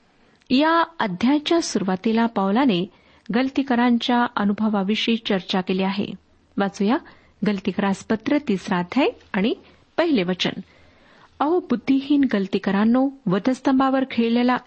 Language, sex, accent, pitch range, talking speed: Marathi, female, native, 205-265 Hz, 80 wpm